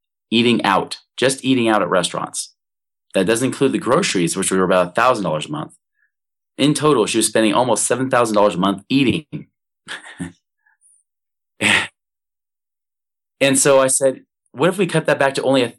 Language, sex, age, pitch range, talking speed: English, male, 20-39, 95-130 Hz, 150 wpm